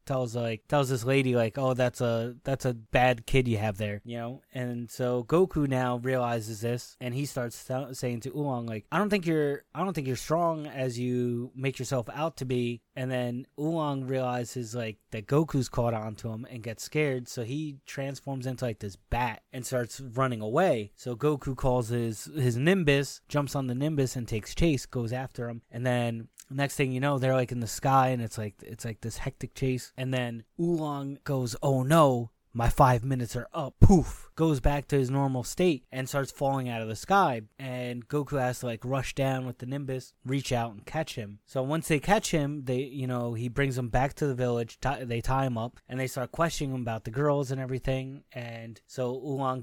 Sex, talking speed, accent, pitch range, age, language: male, 215 wpm, American, 120-140 Hz, 20-39, English